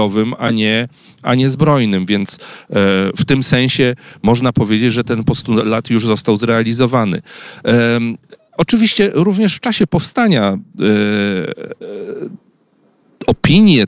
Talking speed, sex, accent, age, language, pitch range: 95 wpm, male, native, 40-59, Polish, 105-145 Hz